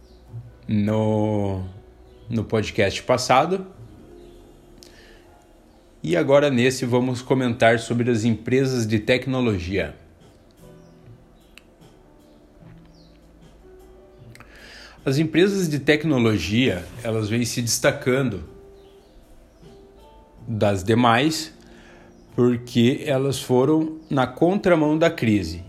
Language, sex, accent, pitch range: English, male, Brazilian, 105-130 Hz